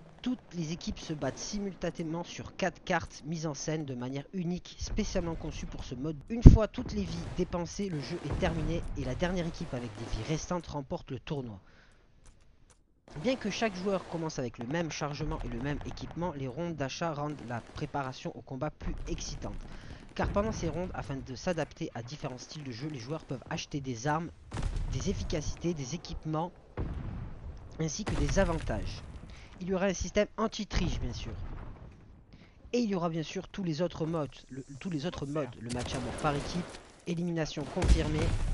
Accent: French